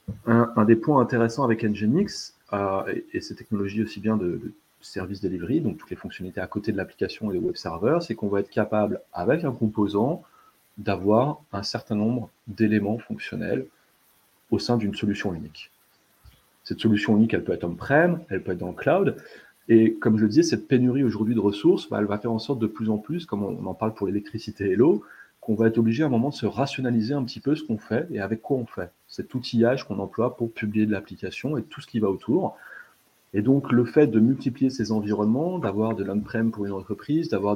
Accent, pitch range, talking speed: French, 105-120 Hz, 225 wpm